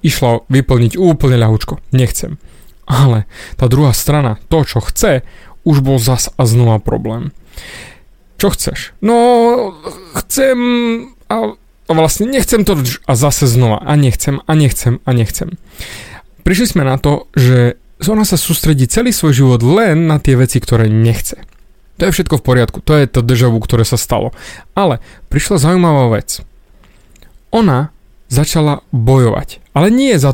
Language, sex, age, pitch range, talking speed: Slovak, male, 30-49, 125-175 Hz, 145 wpm